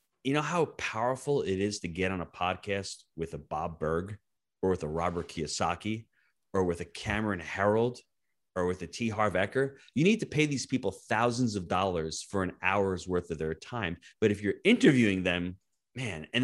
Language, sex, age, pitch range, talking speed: English, male, 30-49, 90-125 Hz, 195 wpm